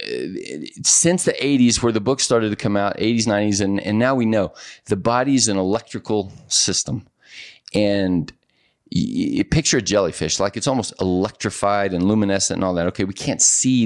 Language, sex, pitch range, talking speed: English, male, 95-115 Hz, 180 wpm